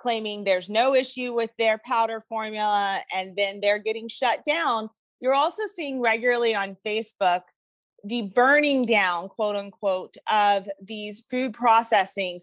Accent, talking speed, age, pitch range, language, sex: American, 140 wpm, 30-49, 205-255 Hz, English, female